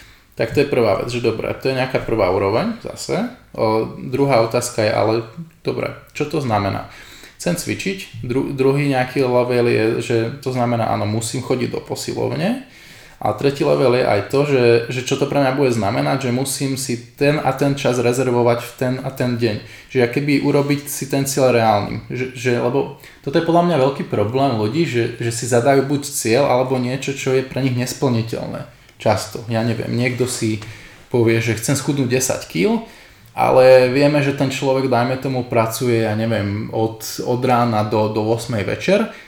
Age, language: 20-39, Slovak